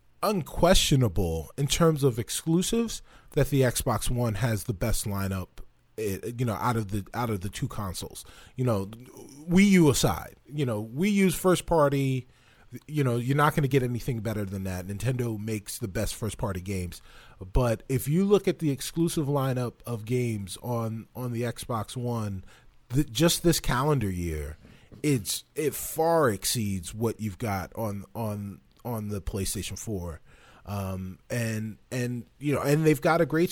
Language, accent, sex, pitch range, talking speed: English, American, male, 110-145 Hz, 170 wpm